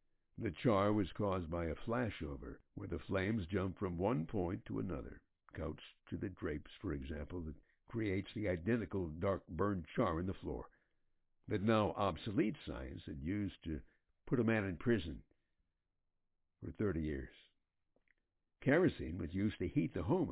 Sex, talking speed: male, 155 wpm